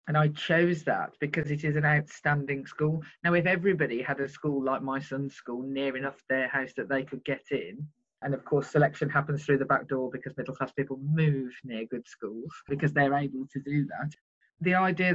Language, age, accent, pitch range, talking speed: English, 30-49, British, 135-170 Hz, 215 wpm